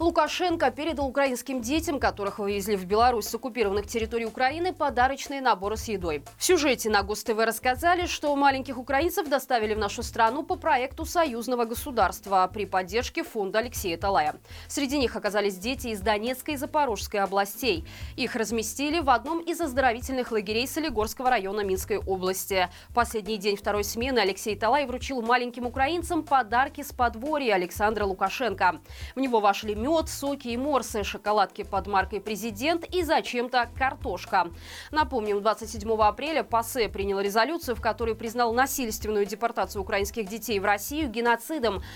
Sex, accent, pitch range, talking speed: female, native, 205-275 Hz, 145 wpm